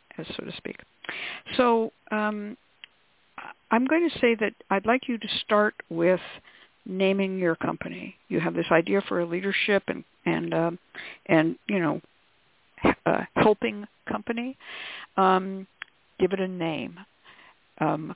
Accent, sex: American, female